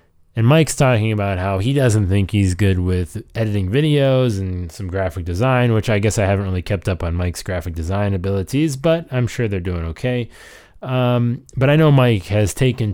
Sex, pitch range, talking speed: male, 95-120 Hz, 200 wpm